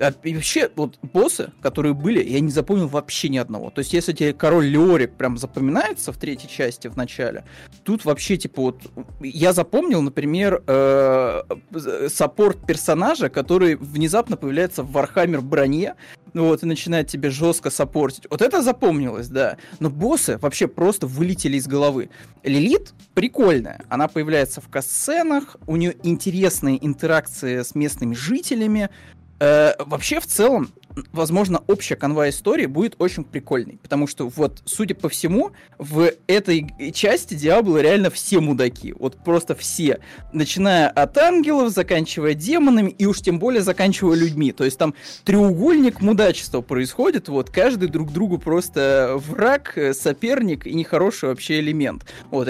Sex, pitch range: male, 140-195 Hz